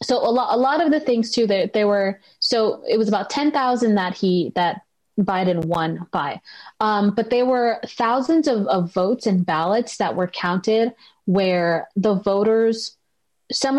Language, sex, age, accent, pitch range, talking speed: English, female, 30-49, American, 190-230 Hz, 185 wpm